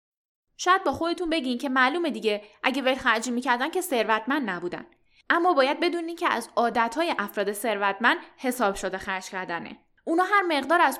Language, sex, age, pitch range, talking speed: Persian, female, 10-29, 210-310 Hz, 160 wpm